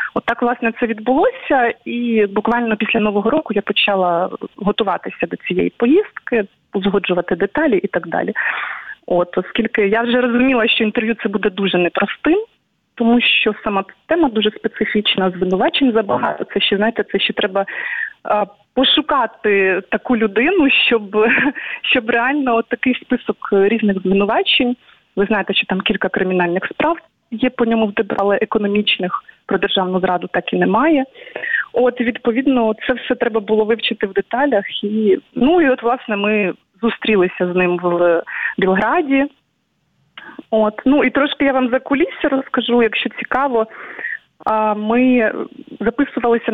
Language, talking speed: Ukrainian, 135 wpm